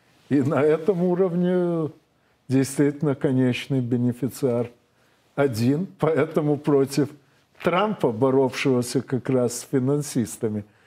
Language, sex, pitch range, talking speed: Russian, male, 125-150 Hz, 90 wpm